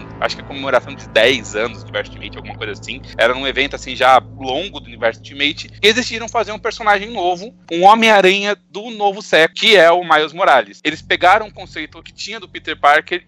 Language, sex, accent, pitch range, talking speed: Portuguese, male, Brazilian, 145-190 Hz, 220 wpm